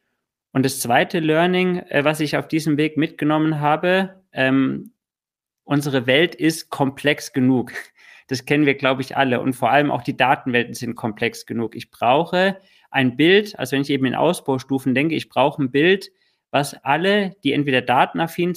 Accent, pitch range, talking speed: German, 135-160 Hz, 170 wpm